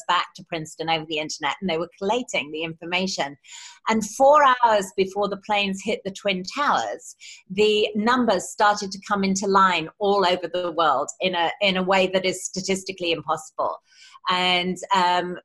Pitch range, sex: 170-215 Hz, female